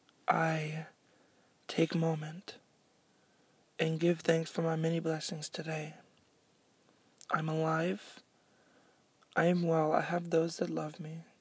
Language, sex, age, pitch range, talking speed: English, male, 20-39, 160-180 Hz, 115 wpm